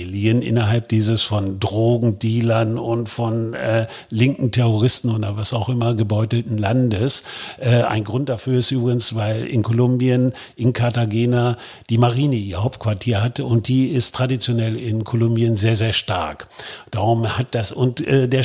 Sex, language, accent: male, German, German